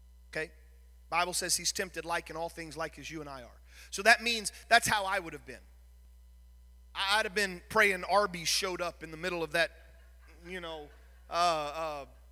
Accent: American